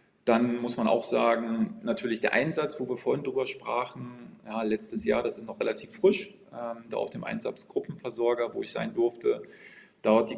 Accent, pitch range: German, 115-195 Hz